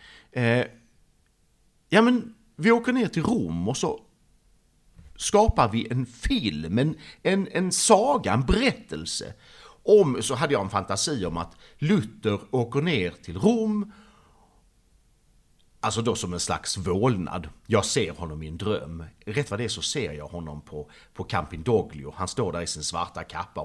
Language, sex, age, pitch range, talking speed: Swedish, male, 50-69, 80-120 Hz, 160 wpm